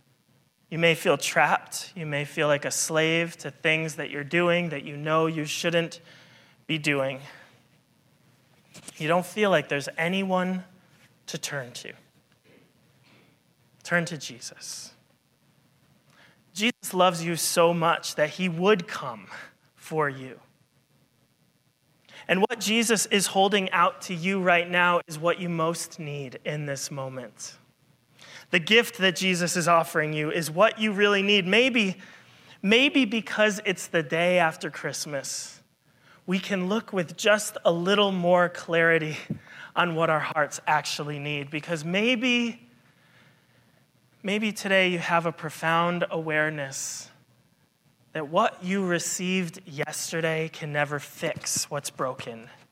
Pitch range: 150-185 Hz